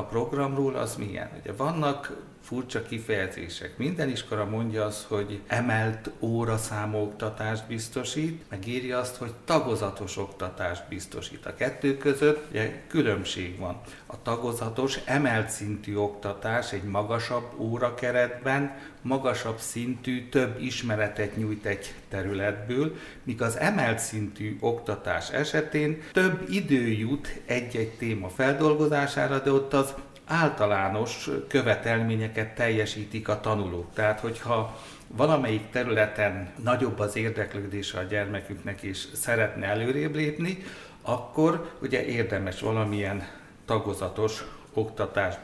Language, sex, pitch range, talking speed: Hungarian, male, 105-135 Hz, 110 wpm